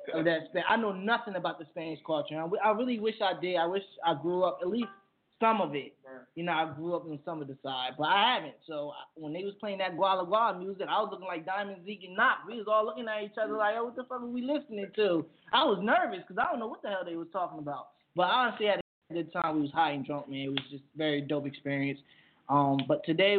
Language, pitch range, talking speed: English, 155-210 Hz, 275 wpm